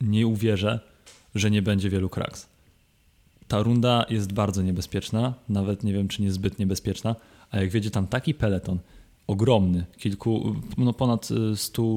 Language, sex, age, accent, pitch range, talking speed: Polish, male, 20-39, native, 100-110 Hz, 150 wpm